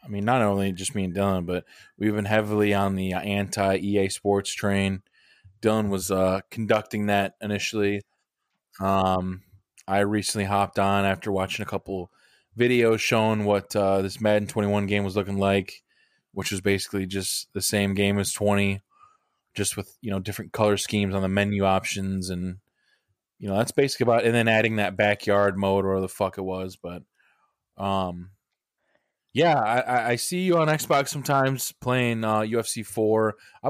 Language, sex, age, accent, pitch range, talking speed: English, male, 20-39, American, 95-110 Hz, 175 wpm